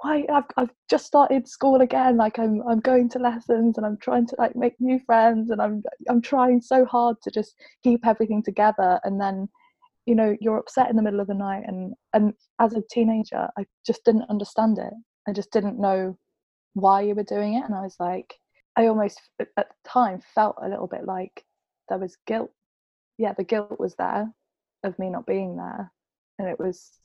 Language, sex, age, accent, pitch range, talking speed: English, female, 20-39, British, 190-235 Hz, 205 wpm